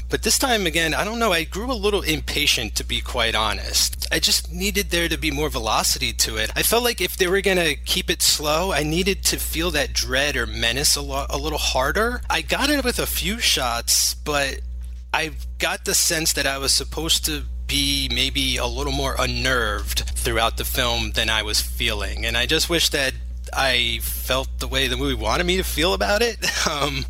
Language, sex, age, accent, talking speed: English, male, 30-49, American, 215 wpm